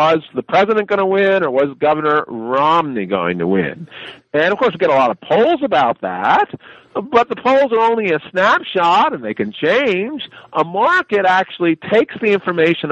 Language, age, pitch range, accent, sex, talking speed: English, 50-69, 150-220 Hz, American, male, 190 wpm